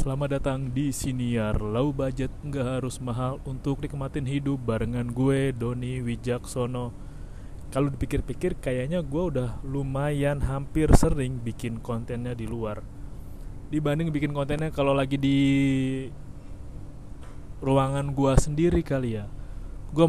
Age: 20-39